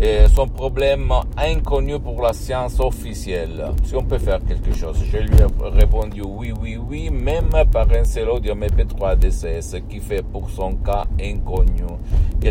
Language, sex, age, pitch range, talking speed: Italian, male, 50-69, 90-110 Hz, 170 wpm